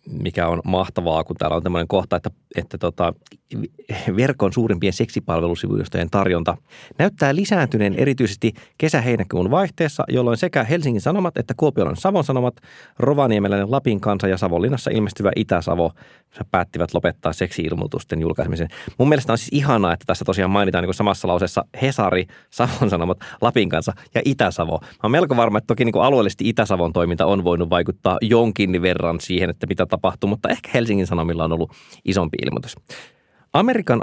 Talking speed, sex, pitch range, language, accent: 155 wpm, male, 90-125 Hz, Finnish, native